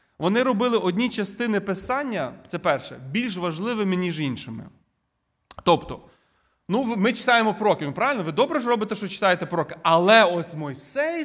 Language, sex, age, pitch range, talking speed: Ukrainian, male, 30-49, 170-235 Hz, 145 wpm